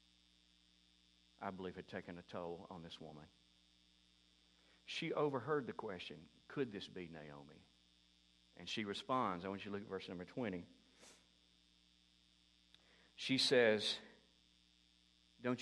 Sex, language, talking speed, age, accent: male, English, 125 wpm, 50-69, American